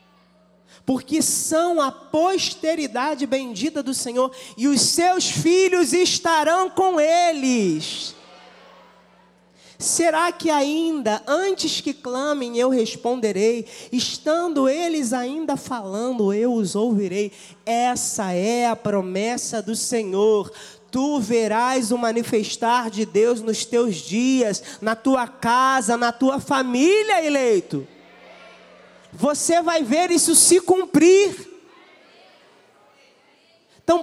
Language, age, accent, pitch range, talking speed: Portuguese, 20-39, Brazilian, 240-325 Hz, 100 wpm